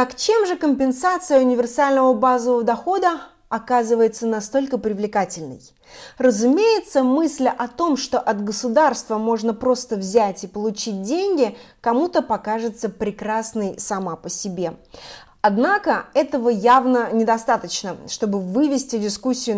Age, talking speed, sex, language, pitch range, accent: 30-49, 110 wpm, female, Russian, 210-270 Hz, native